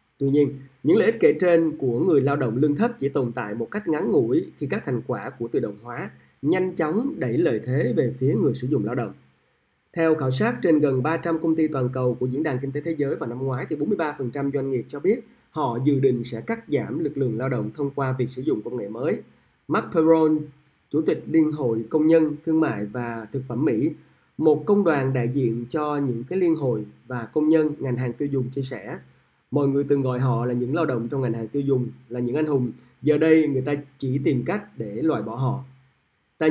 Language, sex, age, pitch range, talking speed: Vietnamese, male, 20-39, 125-155 Hz, 240 wpm